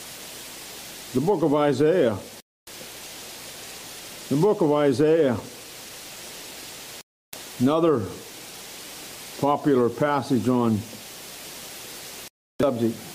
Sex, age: male, 60-79